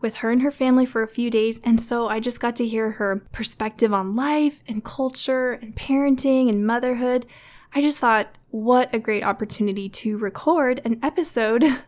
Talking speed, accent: 185 wpm, American